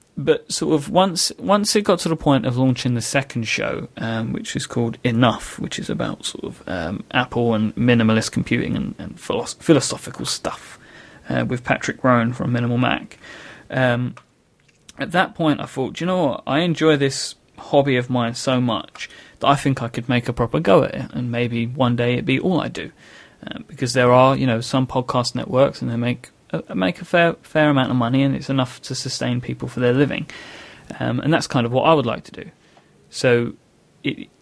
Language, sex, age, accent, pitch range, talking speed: English, male, 30-49, British, 120-135 Hz, 210 wpm